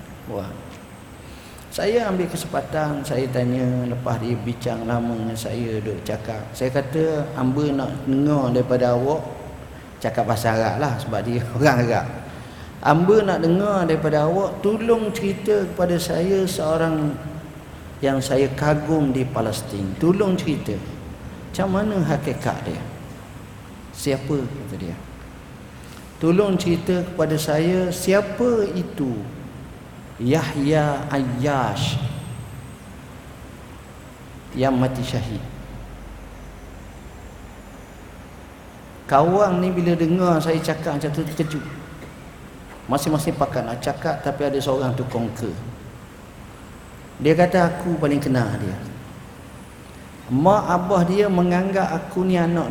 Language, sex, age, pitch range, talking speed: Malay, male, 50-69, 120-170 Hz, 105 wpm